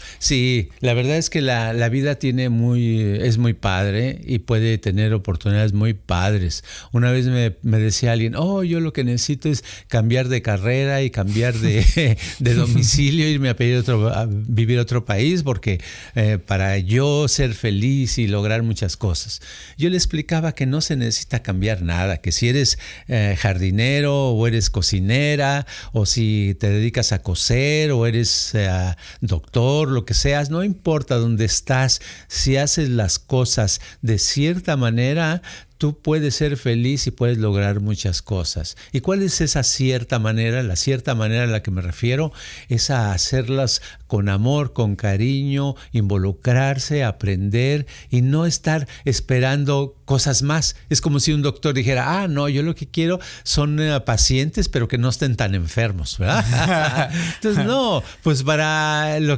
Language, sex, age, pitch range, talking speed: Spanish, male, 50-69, 110-145 Hz, 165 wpm